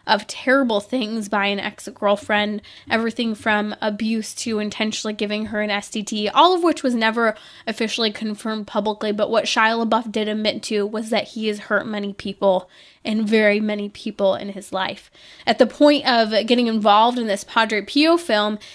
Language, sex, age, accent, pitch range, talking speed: English, female, 10-29, American, 215-255 Hz, 175 wpm